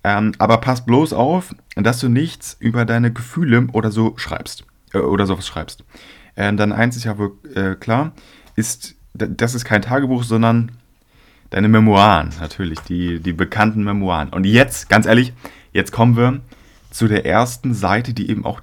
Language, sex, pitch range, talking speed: German, male, 95-120 Hz, 175 wpm